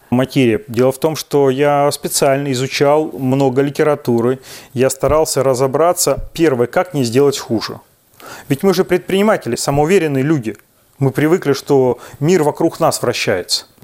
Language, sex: Russian, male